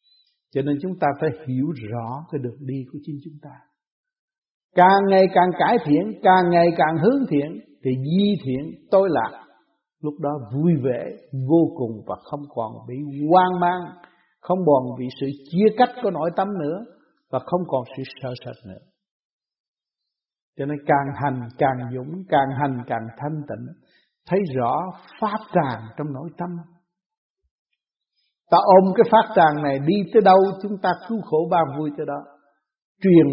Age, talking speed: 60-79, 170 wpm